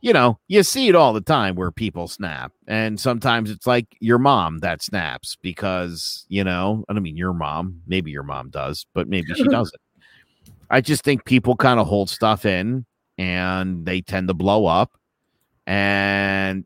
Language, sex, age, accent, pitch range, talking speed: English, male, 50-69, American, 95-130 Hz, 185 wpm